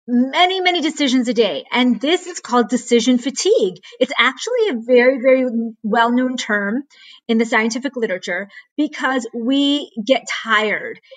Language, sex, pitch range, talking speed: English, female, 230-290 Hz, 145 wpm